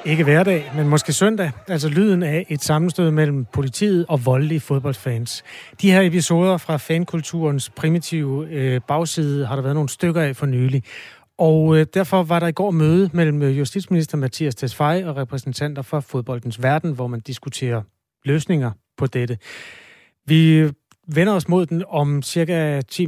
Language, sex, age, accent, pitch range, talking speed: Danish, male, 30-49, native, 130-160 Hz, 160 wpm